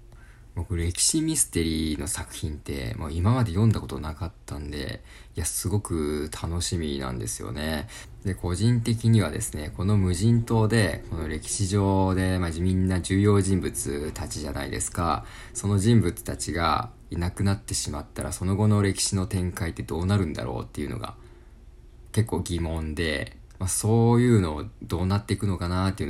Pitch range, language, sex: 80-105 Hz, Japanese, male